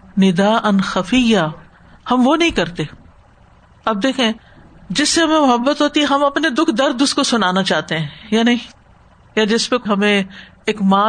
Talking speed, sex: 155 wpm, female